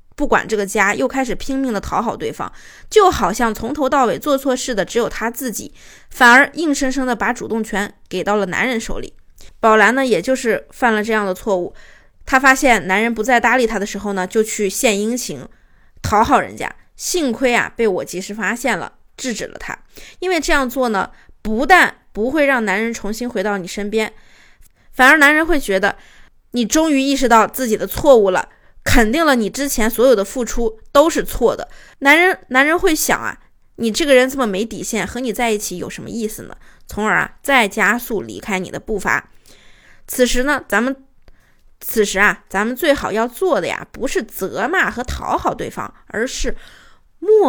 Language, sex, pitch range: Chinese, female, 205-270 Hz